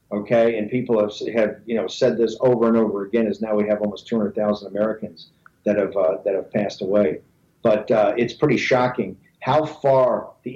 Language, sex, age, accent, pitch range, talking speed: English, male, 50-69, American, 115-135 Hz, 200 wpm